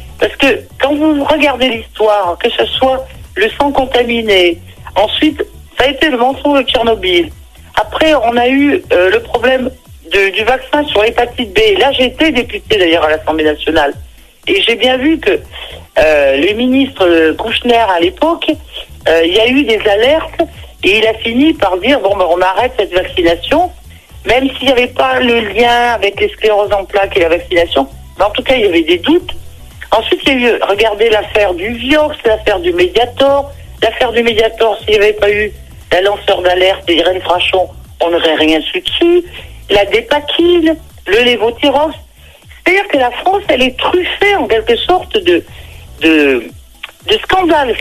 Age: 60-79